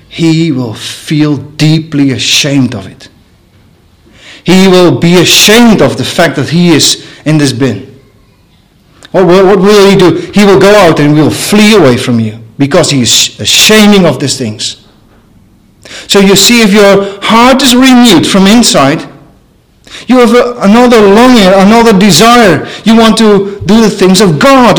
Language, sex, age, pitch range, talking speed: English, male, 40-59, 145-230 Hz, 165 wpm